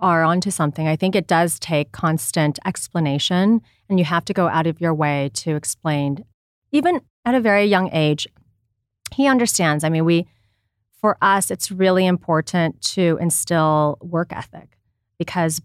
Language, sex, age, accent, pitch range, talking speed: English, female, 30-49, American, 150-200 Hz, 160 wpm